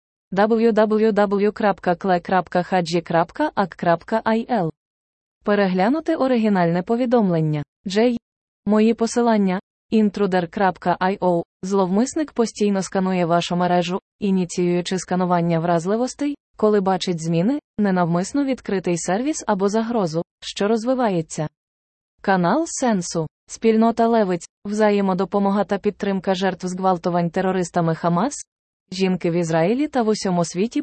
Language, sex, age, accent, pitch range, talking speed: Ukrainian, female, 20-39, native, 175-220 Hz, 85 wpm